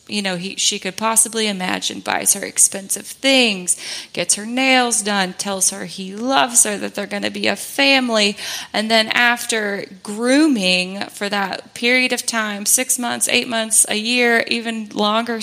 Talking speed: 170 wpm